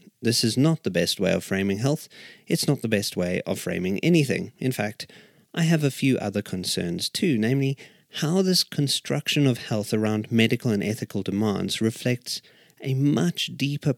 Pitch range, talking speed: 105-140 Hz, 175 wpm